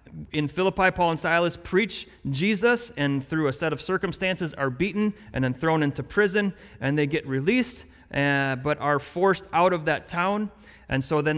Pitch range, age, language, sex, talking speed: 140-185 Hz, 30-49, English, male, 185 wpm